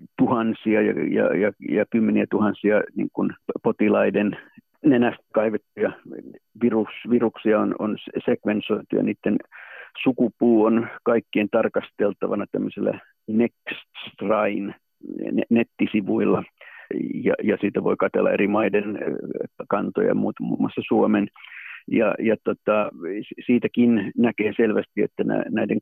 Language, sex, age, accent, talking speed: Finnish, male, 50-69, native, 110 wpm